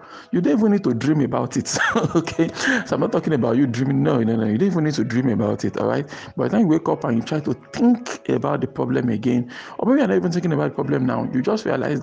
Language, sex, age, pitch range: English, male, 50-69, 120-160 Hz